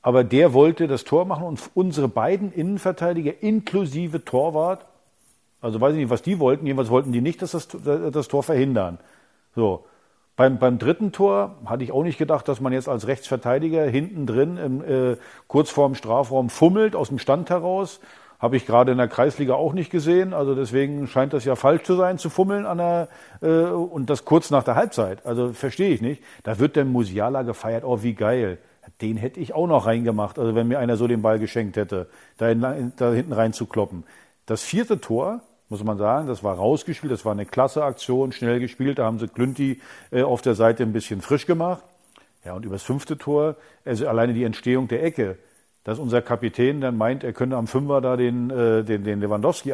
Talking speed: 200 wpm